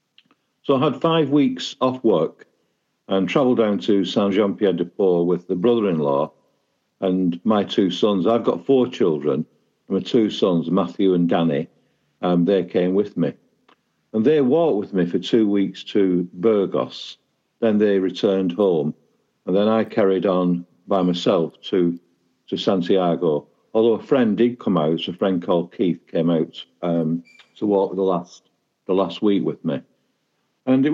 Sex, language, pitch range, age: male, English, 90-115 Hz, 50-69